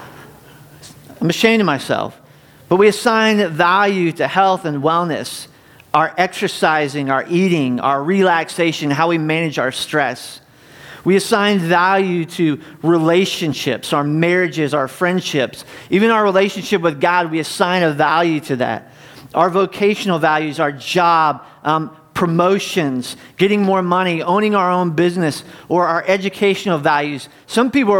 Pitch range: 145-205 Hz